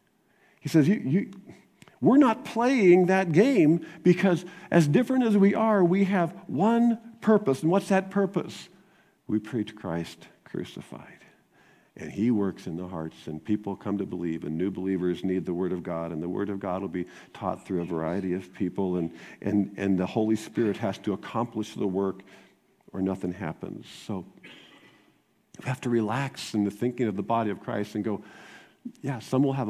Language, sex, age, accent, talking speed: English, male, 50-69, American, 185 wpm